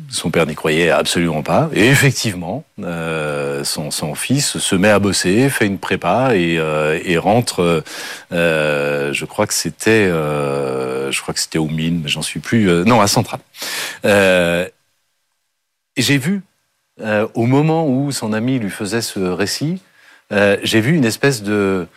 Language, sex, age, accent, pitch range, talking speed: French, male, 40-59, French, 80-110 Hz, 160 wpm